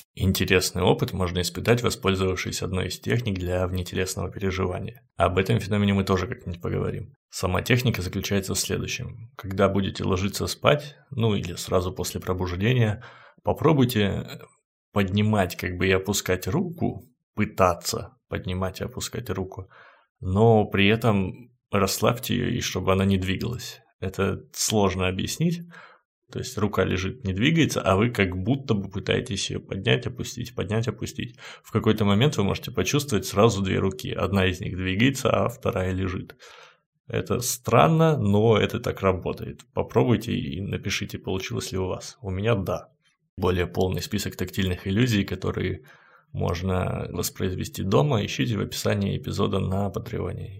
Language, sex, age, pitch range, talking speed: Russian, male, 20-39, 95-115 Hz, 145 wpm